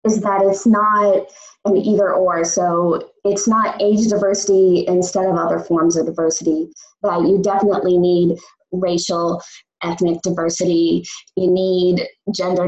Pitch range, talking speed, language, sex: 175-200 Hz, 130 wpm, English, female